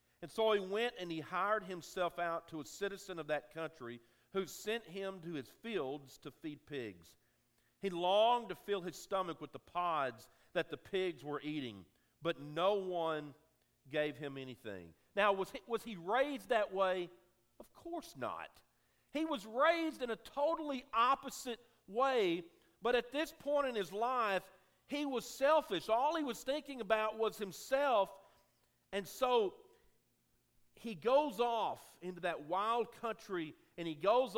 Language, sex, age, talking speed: English, male, 50-69, 160 wpm